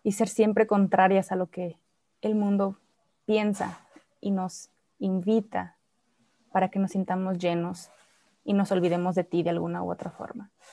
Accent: Mexican